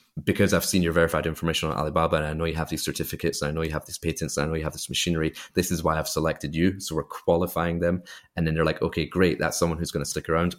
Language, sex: English, male